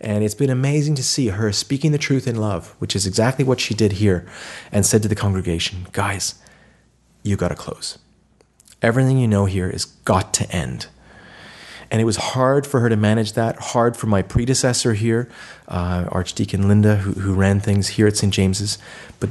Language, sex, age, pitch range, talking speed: English, male, 30-49, 100-120 Hz, 195 wpm